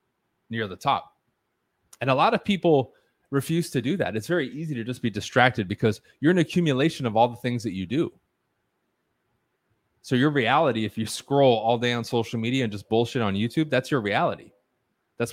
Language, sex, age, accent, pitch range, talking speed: English, male, 20-39, American, 105-130 Hz, 195 wpm